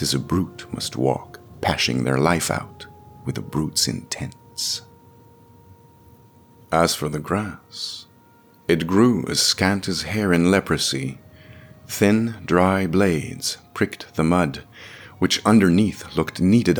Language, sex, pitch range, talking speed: English, male, 85-115 Hz, 125 wpm